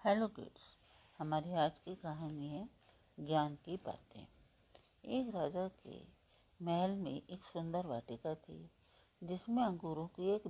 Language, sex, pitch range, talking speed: Hindi, female, 150-195 Hz, 130 wpm